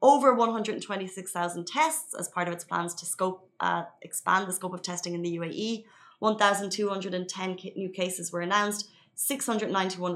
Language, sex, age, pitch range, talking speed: Arabic, female, 20-39, 180-220 Hz, 150 wpm